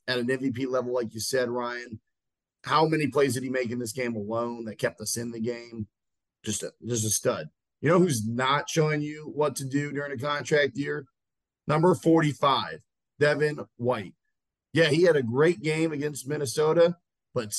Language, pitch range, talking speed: English, 125-160 Hz, 190 wpm